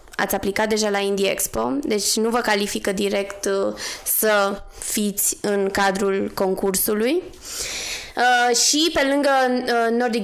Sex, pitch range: female, 195-225 Hz